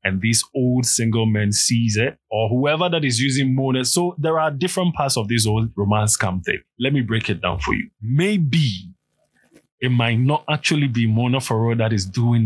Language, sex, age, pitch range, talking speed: English, male, 20-39, 110-135 Hz, 200 wpm